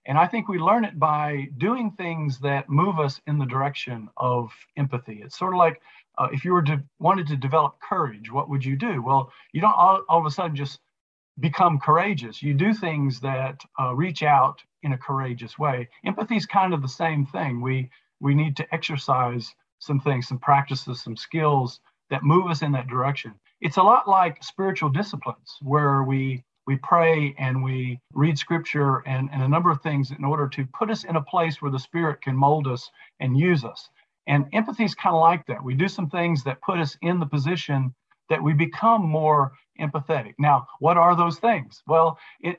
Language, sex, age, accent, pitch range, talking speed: English, male, 50-69, American, 135-165 Hz, 205 wpm